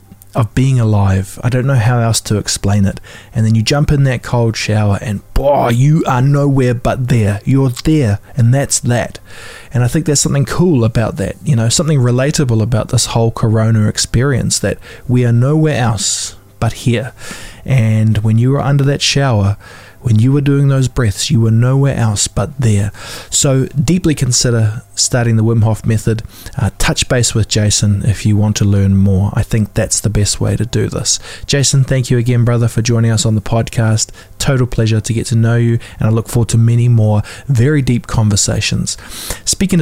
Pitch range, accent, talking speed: 110-135 Hz, Australian, 195 wpm